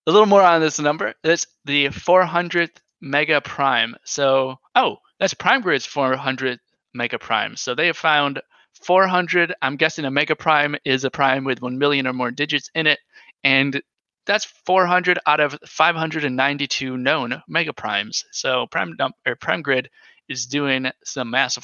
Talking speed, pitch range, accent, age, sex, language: 155 wpm, 130-160 Hz, American, 20-39, male, English